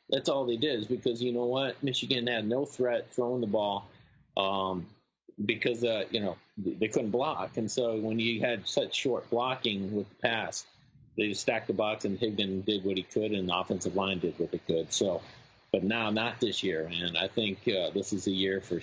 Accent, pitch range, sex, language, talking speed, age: American, 100-125 Hz, male, English, 215 wpm, 40-59